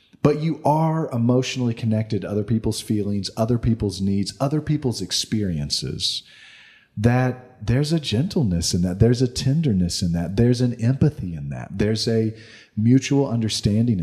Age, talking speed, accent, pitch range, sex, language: 40-59, 150 wpm, American, 100-125 Hz, male, English